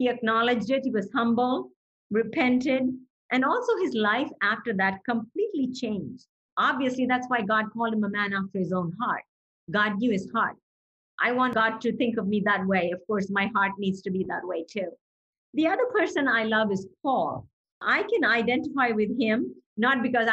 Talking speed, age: 190 wpm, 50-69